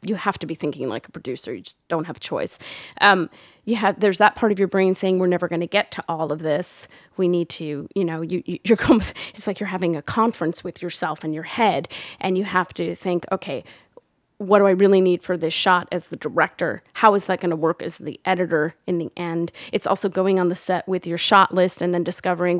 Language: English